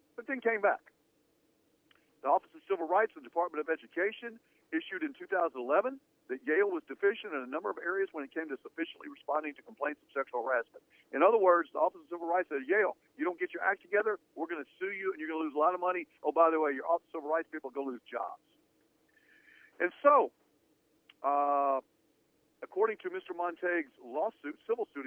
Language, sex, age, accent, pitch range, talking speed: English, male, 50-69, American, 140-190 Hz, 220 wpm